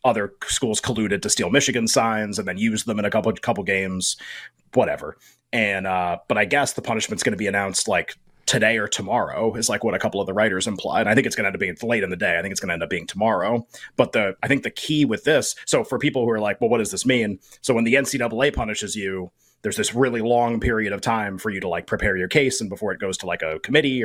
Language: English